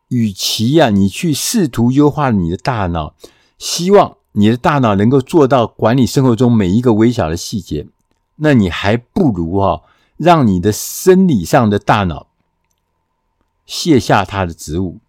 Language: Chinese